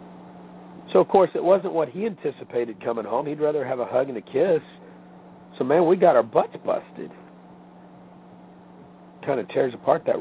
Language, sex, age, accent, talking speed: English, male, 50-69, American, 175 wpm